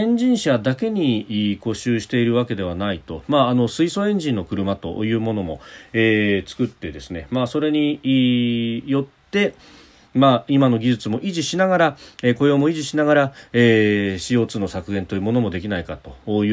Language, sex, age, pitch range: Japanese, male, 40-59, 95-130 Hz